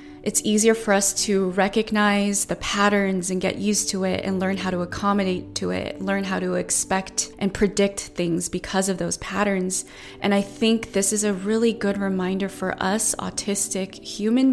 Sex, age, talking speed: female, 20-39, 180 wpm